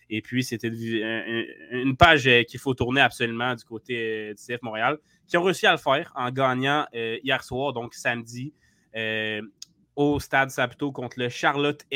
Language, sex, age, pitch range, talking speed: French, male, 20-39, 115-140 Hz, 160 wpm